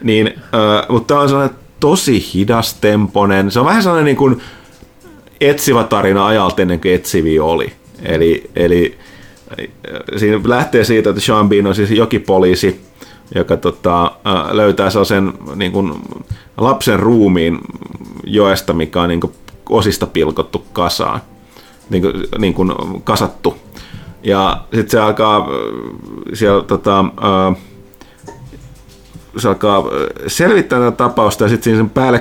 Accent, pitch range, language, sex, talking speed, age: native, 95-115 Hz, Finnish, male, 125 wpm, 30-49